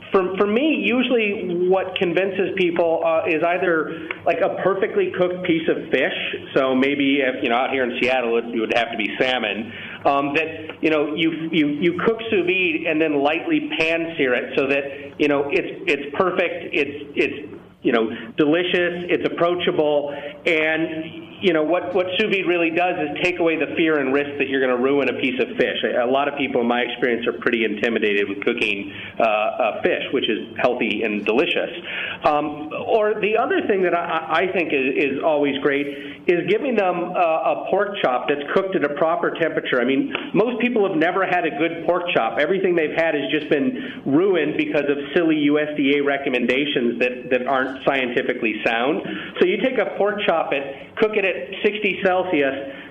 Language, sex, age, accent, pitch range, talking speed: English, male, 40-59, American, 140-185 Hz, 195 wpm